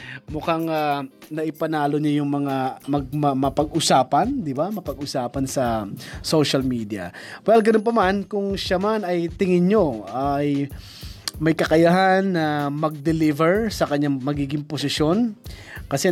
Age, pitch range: 20-39, 140-175 Hz